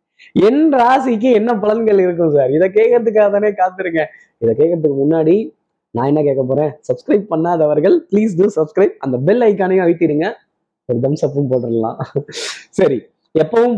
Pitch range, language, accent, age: 155-205 Hz, Tamil, native, 20-39